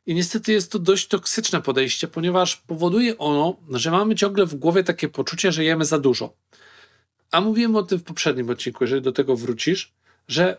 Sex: male